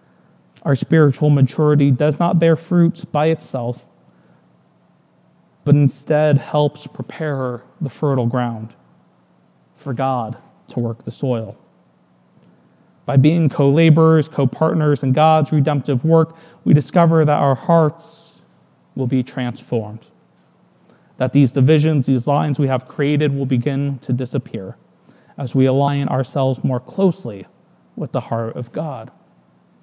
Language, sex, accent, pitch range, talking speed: English, male, American, 130-155 Hz, 125 wpm